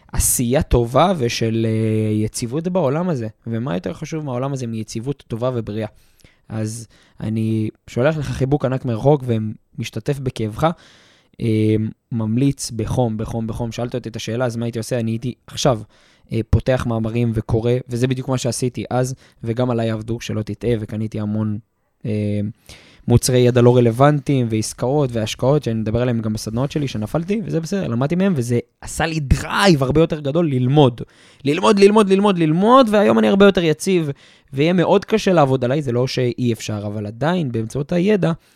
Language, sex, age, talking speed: Hebrew, male, 20-39, 155 wpm